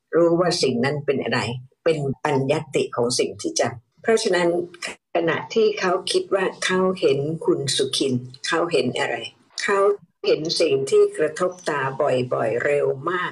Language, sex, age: Thai, female, 60-79